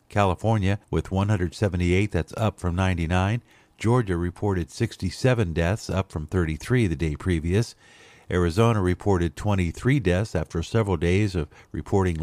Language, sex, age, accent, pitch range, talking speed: English, male, 50-69, American, 85-115 Hz, 130 wpm